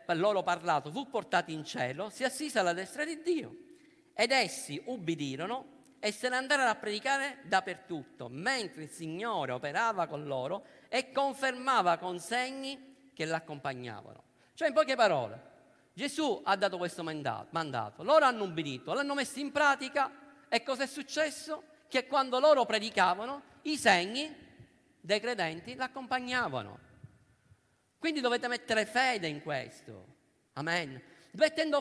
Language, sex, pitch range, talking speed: Italian, male, 200-275 Hz, 135 wpm